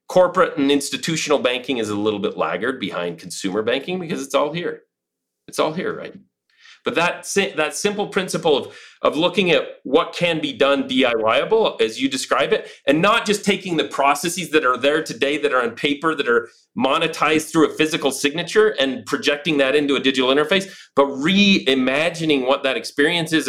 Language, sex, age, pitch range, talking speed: English, male, 30-49, 135-200 Hz, 185 wpm